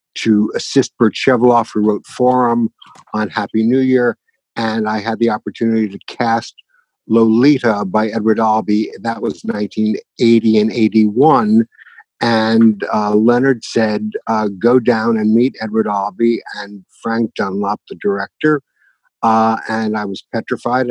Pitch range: 105-120 Hz